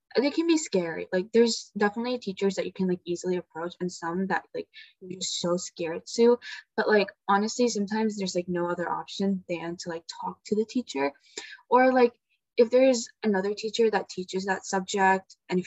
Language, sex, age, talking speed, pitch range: English, female, 10-29, 190 wpm, 180-220 Hz